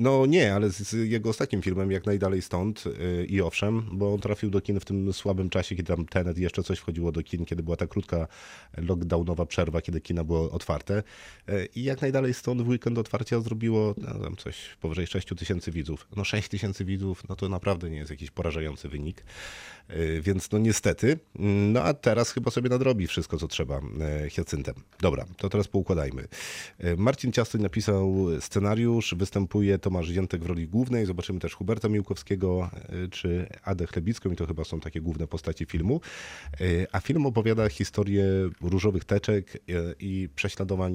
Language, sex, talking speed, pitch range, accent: Polish, male, 165 wpm, 85-100 Hz, native